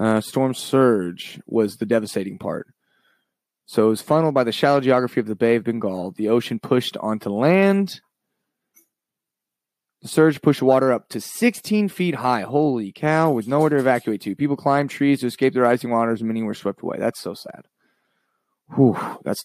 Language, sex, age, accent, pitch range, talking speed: English, male, 20-39, American, 110-145 Hz, 180 wpm